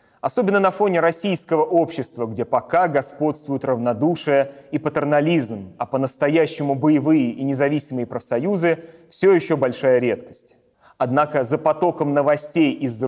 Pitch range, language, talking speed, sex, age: 130-170 Hz, Russian, 120 wpm, male, 30-49